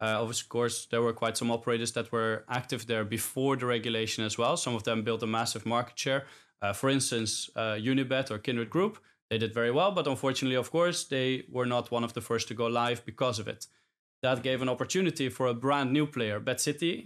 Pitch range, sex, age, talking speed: 120-140 Hz, male, 20-39, 225 wpm